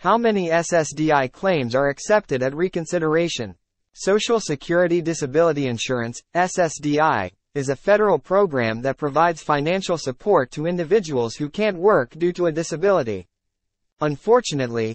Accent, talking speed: American, 125 wpm